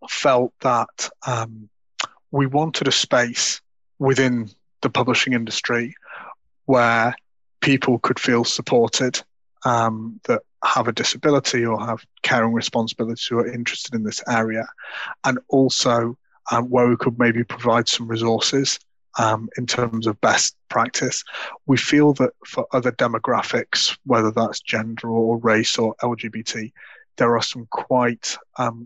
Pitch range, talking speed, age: 115-125 Hz, 135 wpm, 30-49